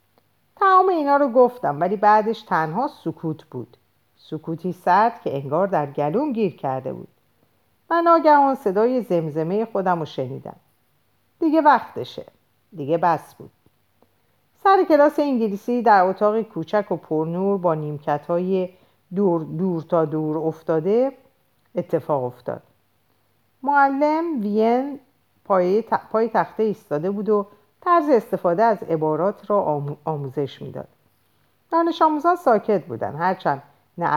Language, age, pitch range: Persian, 50-69, 155-250 Hz